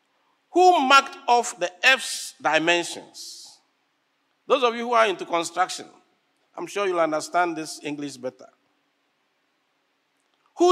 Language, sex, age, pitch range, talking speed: English, male, 50-69, 185-280 Hz, 120 wpm